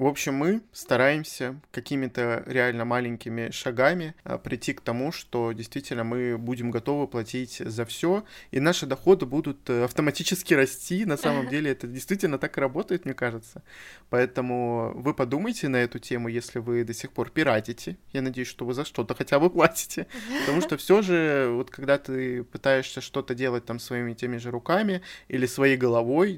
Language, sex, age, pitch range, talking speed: Russian, male, 20-39, 120-145 Hz, 170 wpm